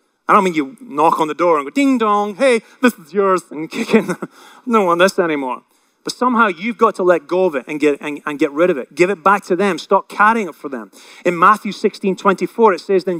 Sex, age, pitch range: male, 30-49, 200-255 Hz